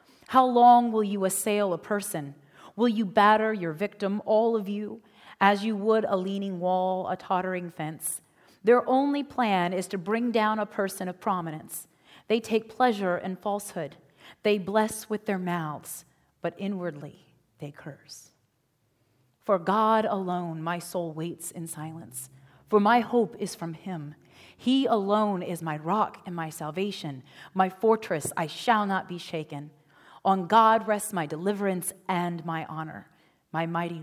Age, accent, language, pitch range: 30-49, American, English, 165-210 Hz